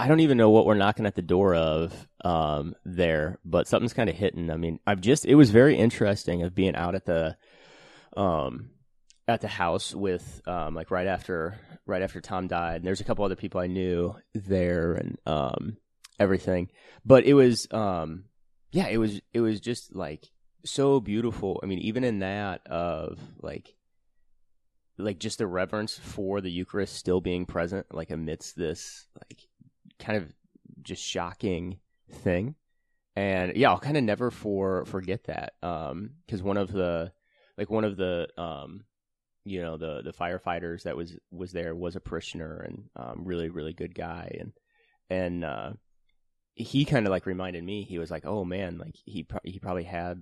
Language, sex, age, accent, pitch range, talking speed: English, male, 30-49, American, 85-105 Hz, 180 wpm